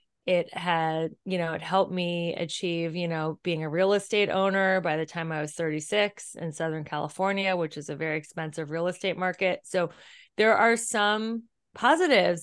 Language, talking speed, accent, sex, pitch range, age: English, 180 wpm, American, female, 170-200 Hz, 30-49